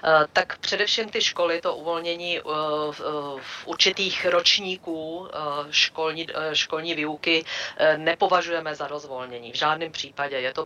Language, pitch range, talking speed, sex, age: Czech, 145-160 Hz, 115 wpm, female, 40-59